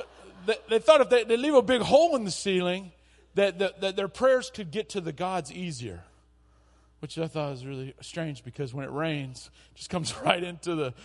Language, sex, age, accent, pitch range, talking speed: English, male, 40-59, American, 135-185 Hz, 210 wpm